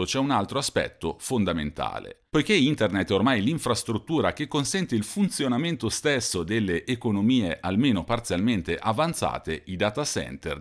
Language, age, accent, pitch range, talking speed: Italian, 40-59, native, 90-125 Hz, 130 wpm